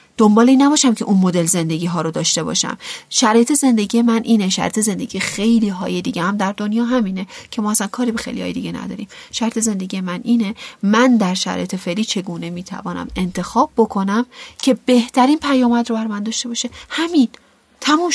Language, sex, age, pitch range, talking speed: Persian, female, 40-59, 170-225 Hz, 180 wpm